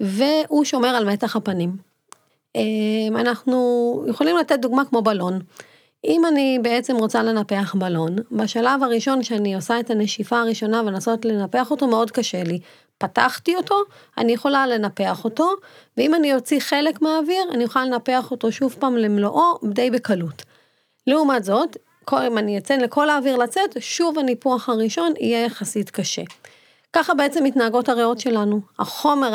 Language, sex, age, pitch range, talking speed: Hebrew, female, 30-49, 205-265 Hz, 145 wpm